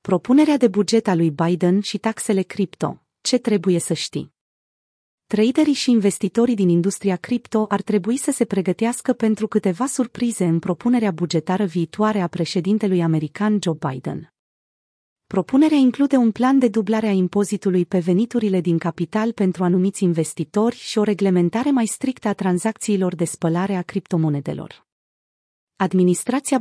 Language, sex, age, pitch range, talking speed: Romanian, female, 30-49, 180-230 Hz, 140 wpm